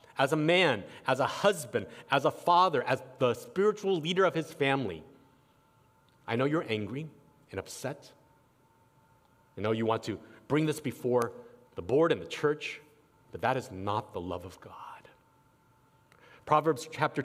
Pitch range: 125-160 Hz